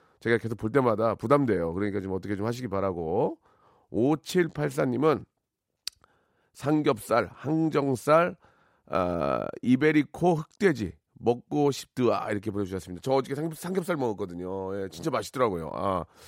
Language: Korean